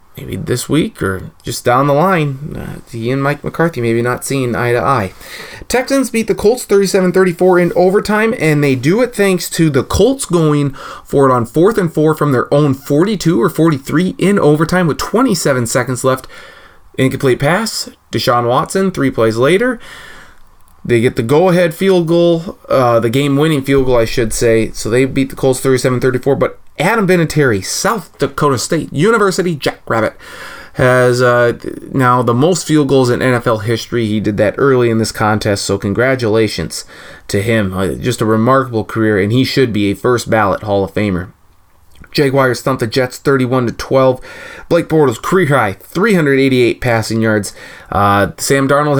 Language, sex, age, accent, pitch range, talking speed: English, male, 20-39, American, 115-165 Hz, 170 wpm